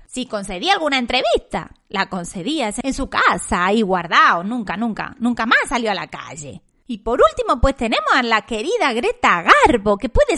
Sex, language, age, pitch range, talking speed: female, Spanish, 30-49, 210-295 Hz, 180 wpm